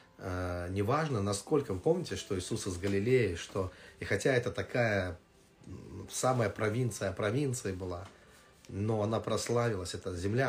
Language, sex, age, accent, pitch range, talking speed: Russian, male, 30-49, native, 95-125 Hz, 125 wpm